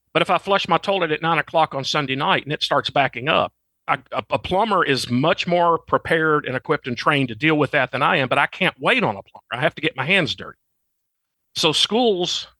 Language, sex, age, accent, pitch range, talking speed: English, male, 50-69, American, 130-170 Hz, 250 wpm